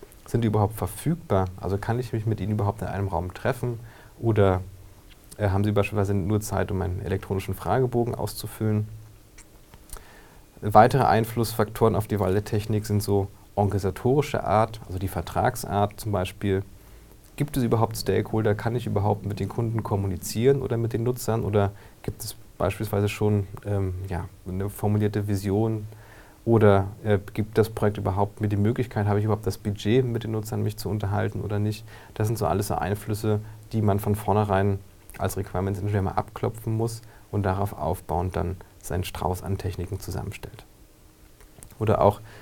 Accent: German